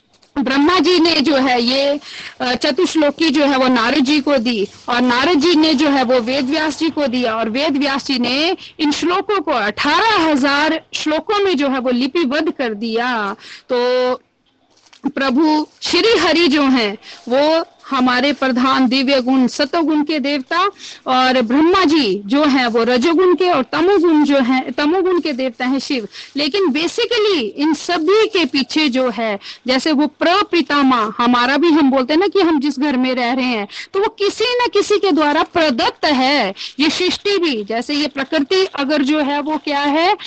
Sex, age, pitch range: female, 50-69, 260-340 Hz